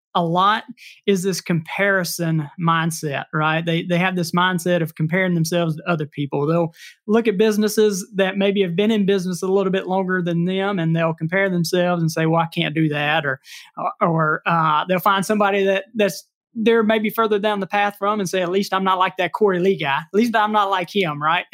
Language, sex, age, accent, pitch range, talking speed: English, male, 20-39, American, 170-210 Hz, 215 wpm